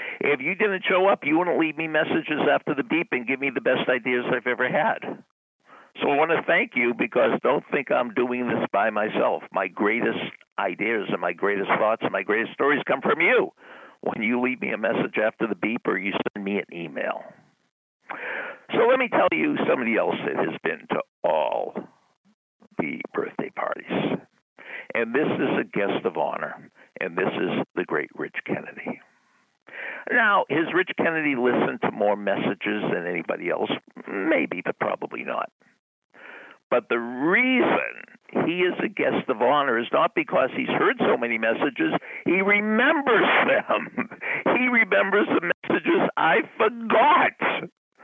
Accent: American